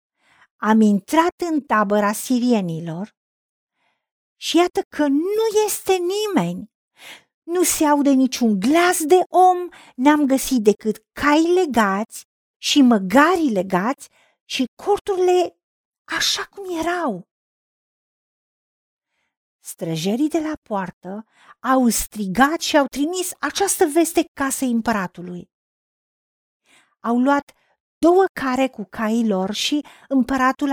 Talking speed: 105 wpm